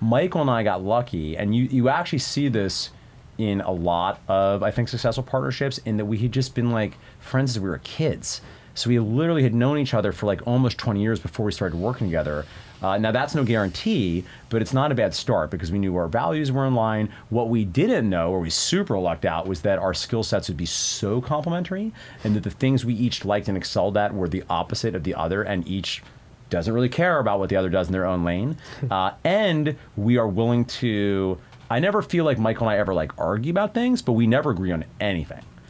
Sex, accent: male, American